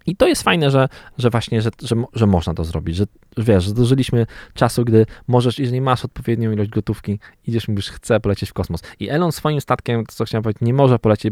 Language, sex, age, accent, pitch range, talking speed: Polish, male, 20-39, native, 105-125 Hz, 215 wpm